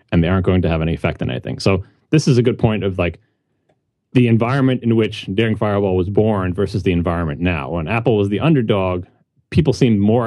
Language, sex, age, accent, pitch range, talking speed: English, male, 30-49, American, 90-115 Hz, 220 wpm